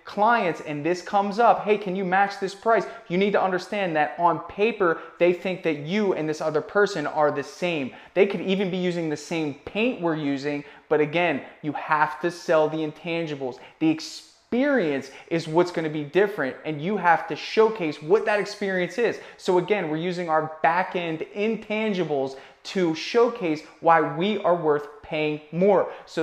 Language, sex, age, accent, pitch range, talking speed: English, male, 20-39, American, 155-200 Hz, 185 wpm